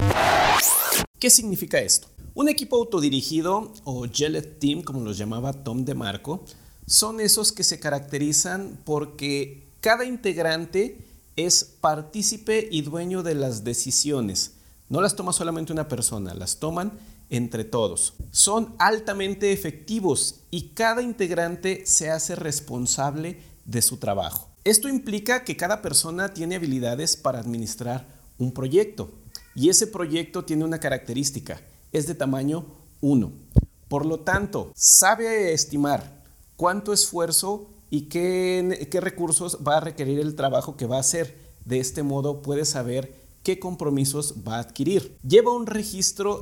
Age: 50-69